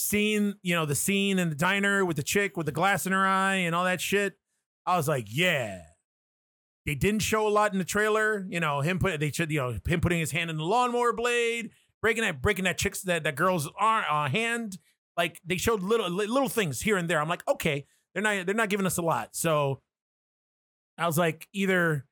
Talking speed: 230 wpm